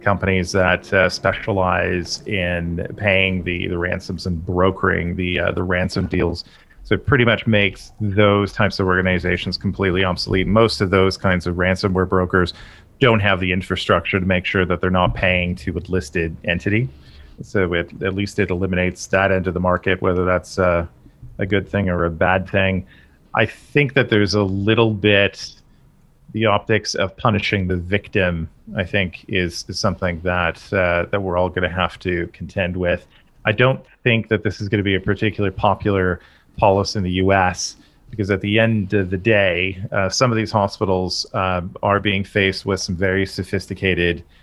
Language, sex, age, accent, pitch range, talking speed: English, male, 40-59, American, 90-105 Hz, 180 wpm